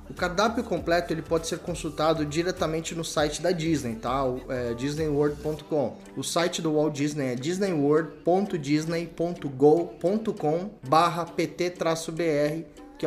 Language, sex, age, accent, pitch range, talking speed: Portuguese, male, 20-39, Brazilian, 140-170 Hz, 110 wpm